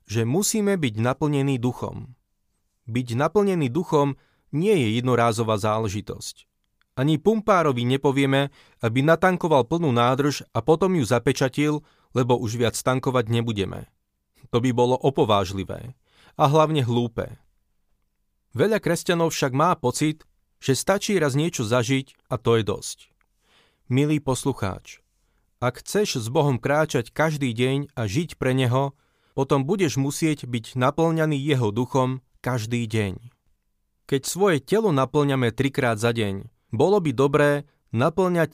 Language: Slovak